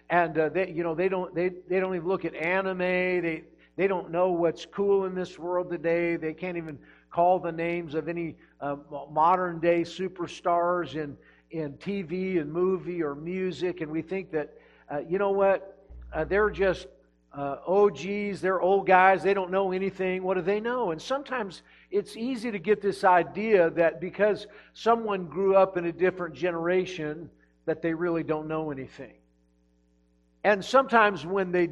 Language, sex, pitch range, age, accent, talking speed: English, male, 170-200 Hz, 50-69, American, 180 wpm